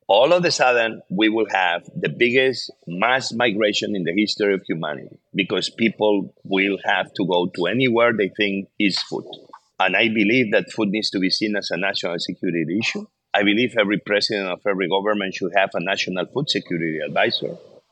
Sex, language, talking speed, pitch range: male, English, 190 wpm, 100-130 Hz